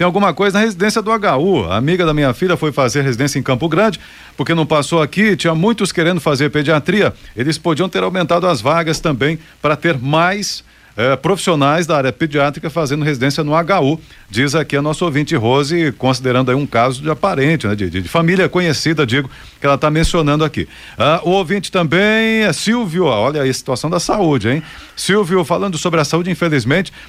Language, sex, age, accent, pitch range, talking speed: Portuguese, male, 50-69, Brazilian, 135-175 Hz, 195 wpm